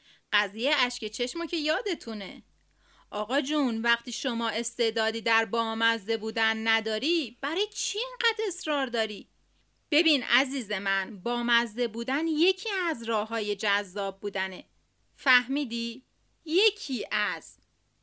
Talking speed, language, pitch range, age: 105 wpm, Persian, 225-330 Hz, 30-49